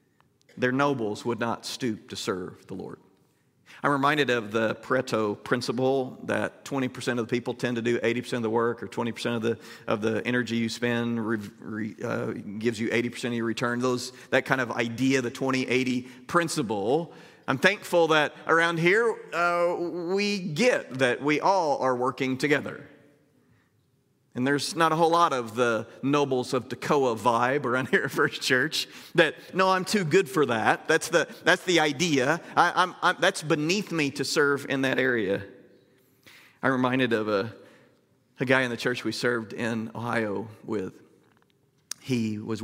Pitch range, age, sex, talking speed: 115-145 Hz, 40-59, male, 175 wpm